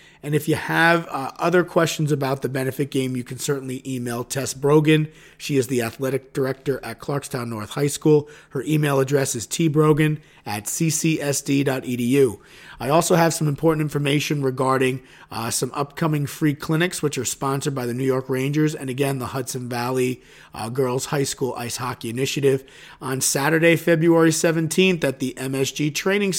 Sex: male